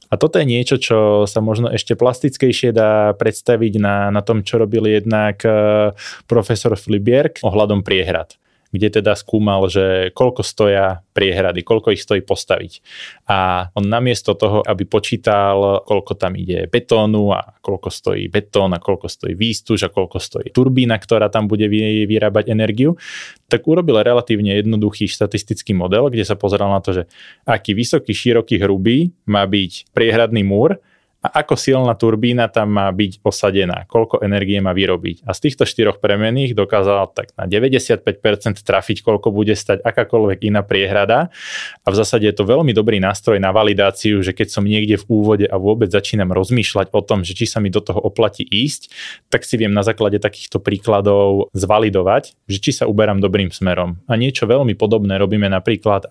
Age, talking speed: 20-39, 170 wpm